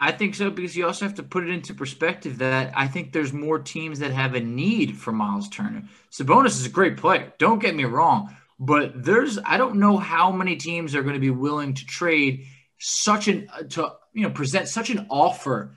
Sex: male